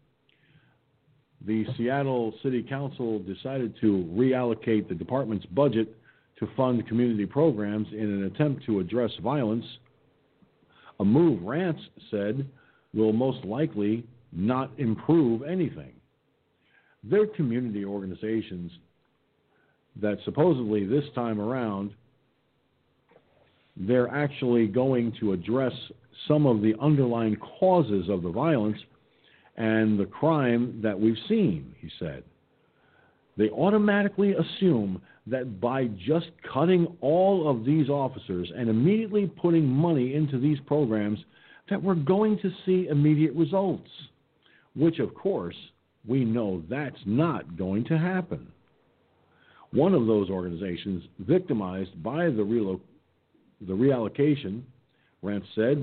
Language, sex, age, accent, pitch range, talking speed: English, male, 50-69, American, 110-150 Hz, 115 wpm